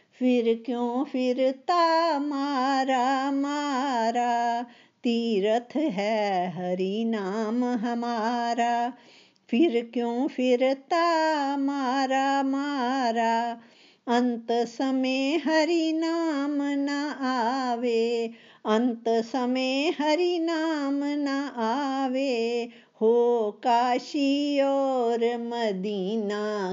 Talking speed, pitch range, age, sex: 70 wpm, 185-270 Hz, 50-69, female